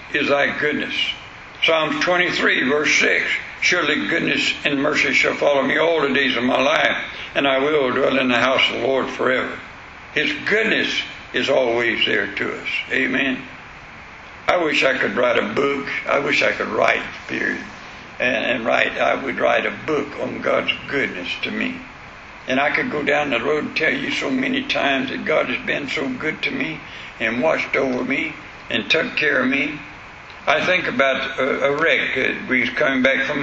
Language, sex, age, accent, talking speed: English, male, 60-79, American, 190 wpm